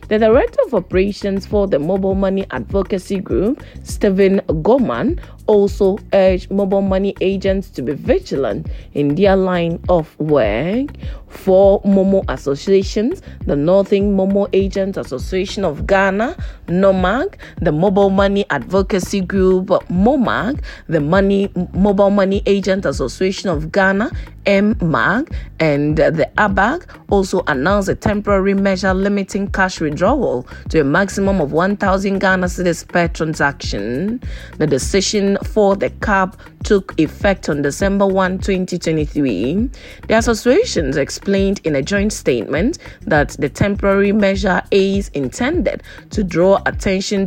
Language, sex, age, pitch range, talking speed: English, female, 30-49, 185-205 Hz, 125 wpm